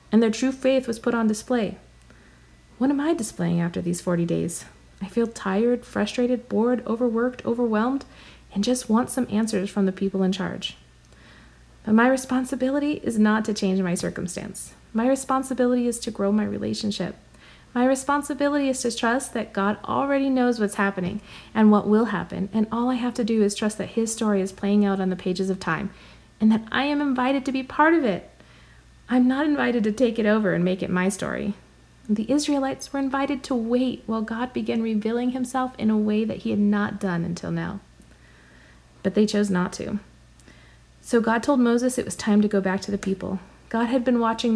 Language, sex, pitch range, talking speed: English, female, 190-245 Hz, 200 wpm